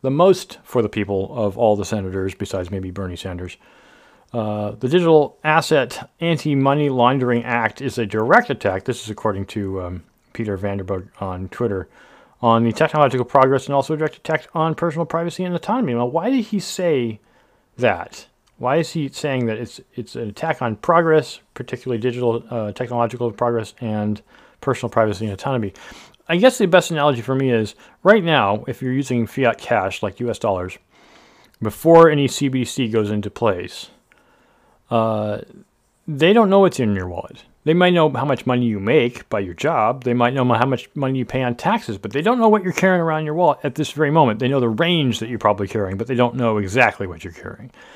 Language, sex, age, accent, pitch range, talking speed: English, male, 40-59, American, 110-160 Hz, 195 wpm